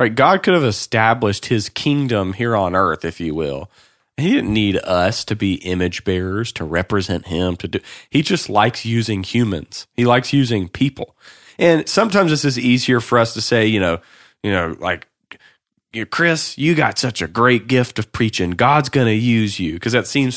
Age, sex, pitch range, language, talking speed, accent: 30-49, male, 95-125 Hz, English, 190 wpm, American